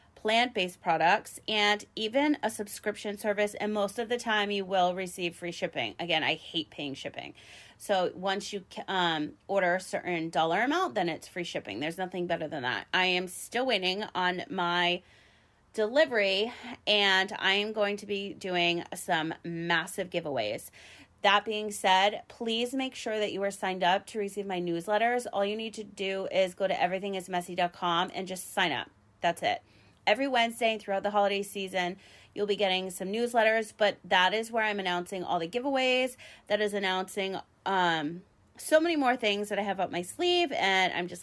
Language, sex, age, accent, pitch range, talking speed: English, female, 30-49, American, 180-220 Hz, 180 wpm